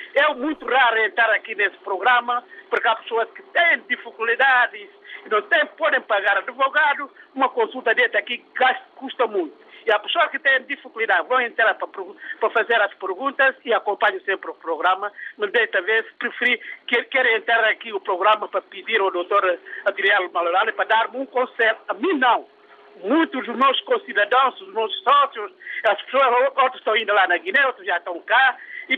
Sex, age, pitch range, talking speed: male, 50-69, 225-310 Hz, 175 wpm